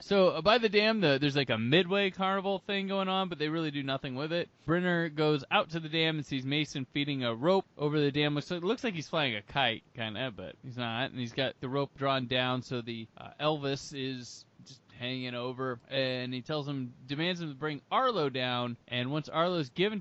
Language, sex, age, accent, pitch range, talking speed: English, male, 20-39, American, 130-170 Hz, 235 wpm